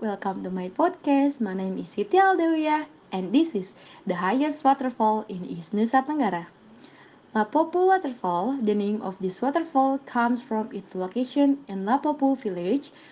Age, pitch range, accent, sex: 20-39, 200-280 Hz, native, female